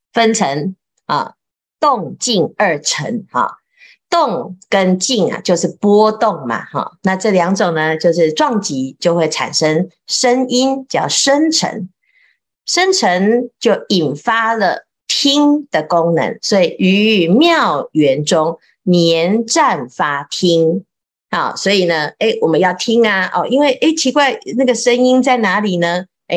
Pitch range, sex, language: 165-250 Hz, female, Chinese